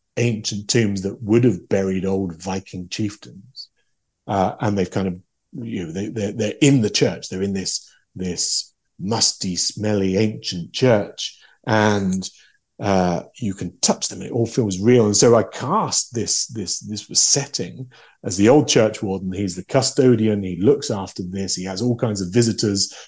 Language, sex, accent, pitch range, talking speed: English, male, British, 95-125 Hz, 170 wpm